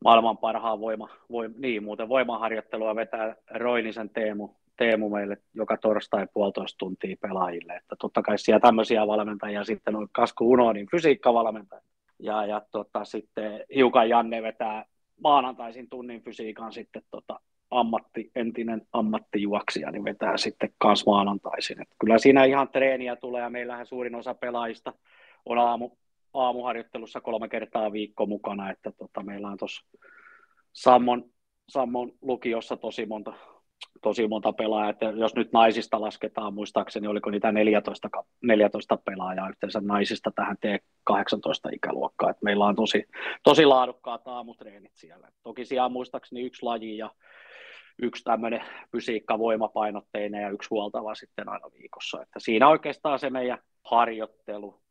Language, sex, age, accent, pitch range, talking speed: Finnish, male, 30-49, native, 105-120 Hz, 130 wpm